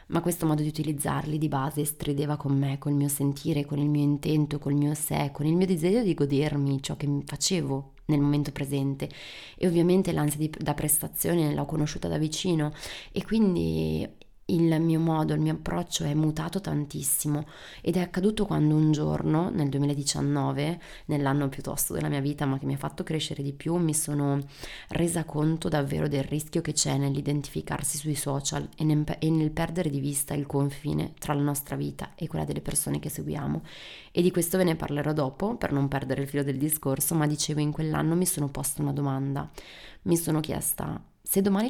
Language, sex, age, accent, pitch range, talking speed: Italian, female, 20-39, native, 140-165 Hz, 190 wpm